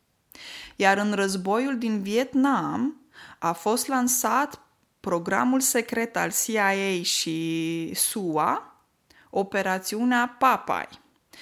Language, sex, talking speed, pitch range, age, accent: Romanian, female, 85 wpm, 195-265 Hz, 20-39, native